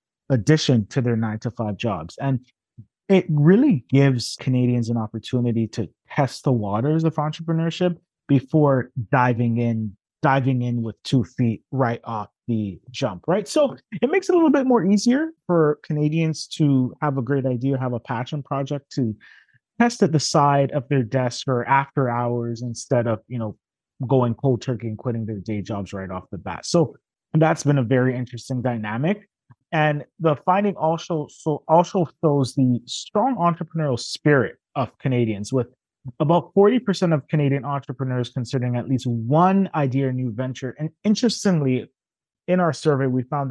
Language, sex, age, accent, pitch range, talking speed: English, male, 30-49, American, 125-160 Hz, 165 wpm